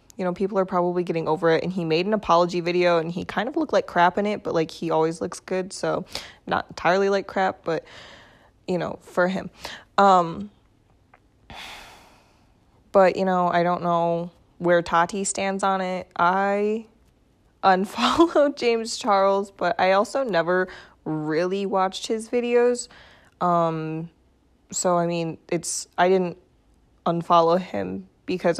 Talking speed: 155 wpm